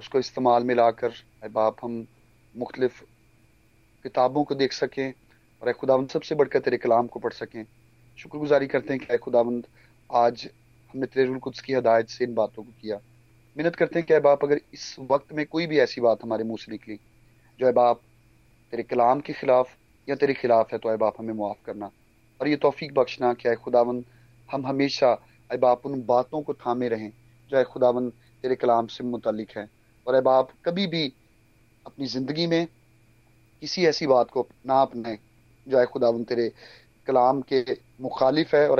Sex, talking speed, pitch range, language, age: male, 180 wpm, 115-135 Hz, Hindi, 30-49